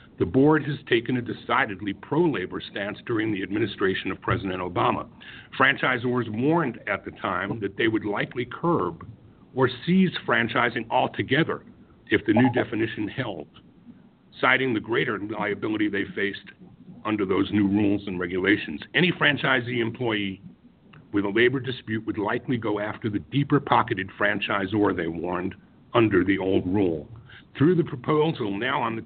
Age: 50-69